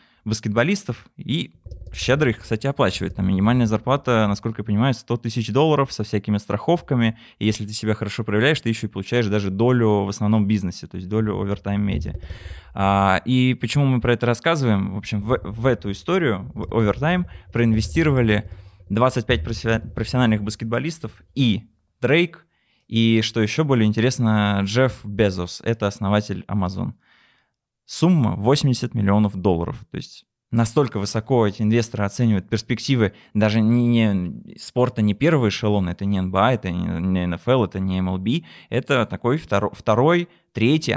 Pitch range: 100-120 Hz